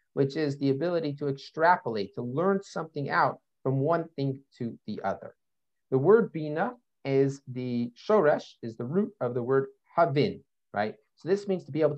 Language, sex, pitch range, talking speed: English, male, 115-165 Hz, 180 wpm